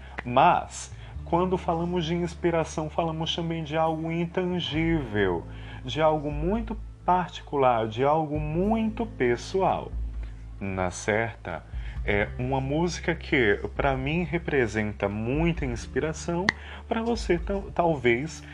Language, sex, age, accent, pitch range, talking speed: Portuguese, male, 30-49, Brazilian, 110-175 Hz, 105 wpm